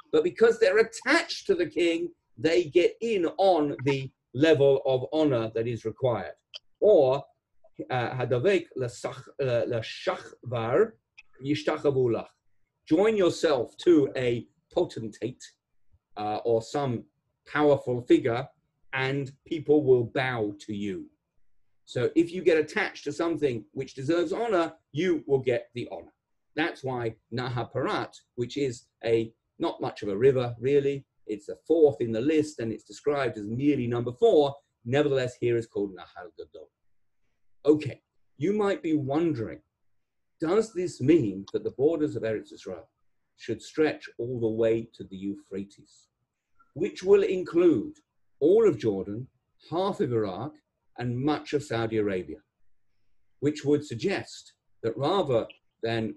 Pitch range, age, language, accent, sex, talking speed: 115-170 Hz, 40-59, English, British, male, 130 wpm